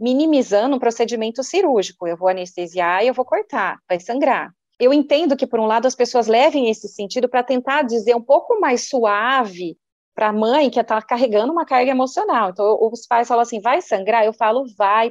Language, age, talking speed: Portuguese, 30-49, 205 wpm